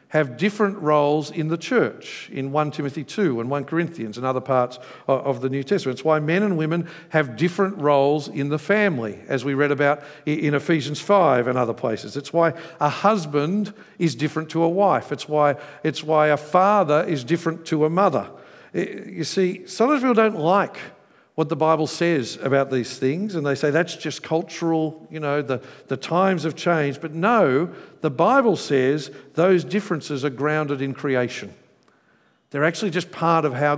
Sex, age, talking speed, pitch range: male, 50-69, 185 wpm, 140-180 Hz